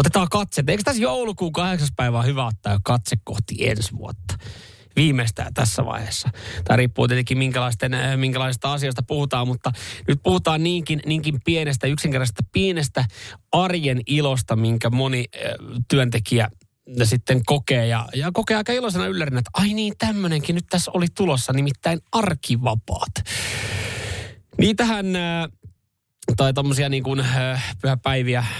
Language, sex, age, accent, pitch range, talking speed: Finnish, male, 30-49, native, 110-145 Hz, 125 wpm